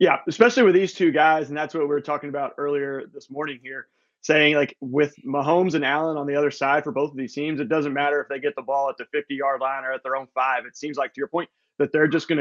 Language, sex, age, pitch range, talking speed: English, male, 20-39, 135-160 Hz, 285 wpm